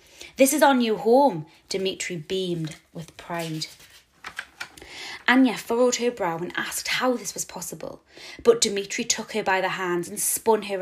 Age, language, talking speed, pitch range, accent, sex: 20-39, English, 160 wpm, 175-215 Hz, British, female